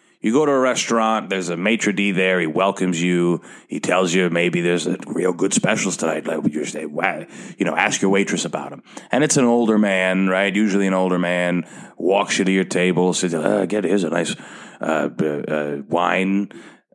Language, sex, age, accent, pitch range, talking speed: English, male, 30-49, American, 95-135 Hz, 205 wpm